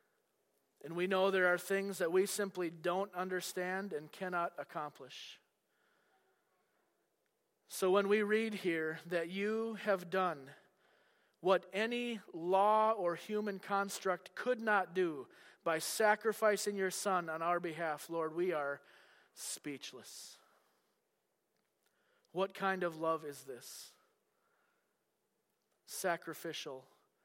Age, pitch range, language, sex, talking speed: 40-59, 180-215 Hz, English, male, 110 wpm